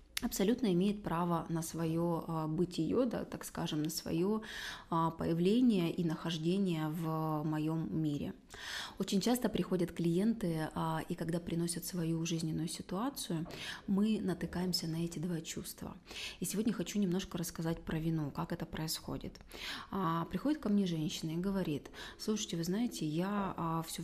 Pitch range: 165-200 Hz